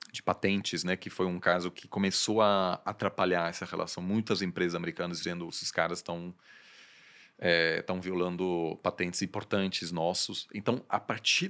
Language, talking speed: Portuguese, 150 wpm